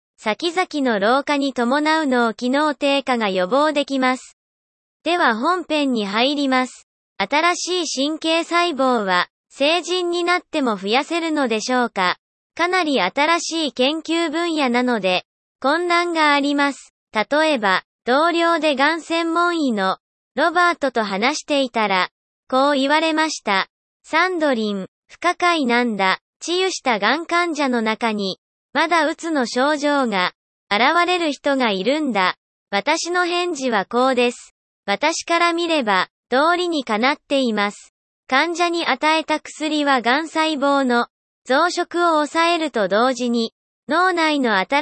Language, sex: Japanese, male